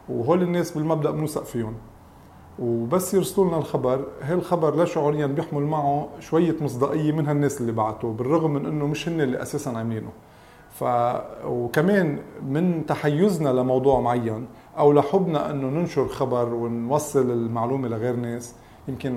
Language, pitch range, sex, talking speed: English, 125-155 Hz, male, 140 wpm